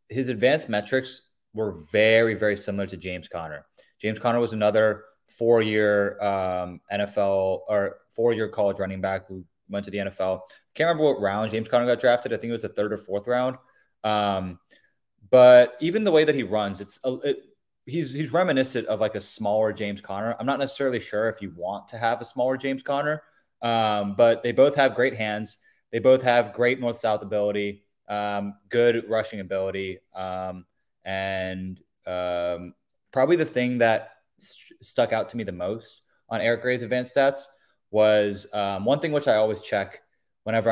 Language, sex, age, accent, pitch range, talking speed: English, male, 20-39, American, 100-120 Hz, 170 wpm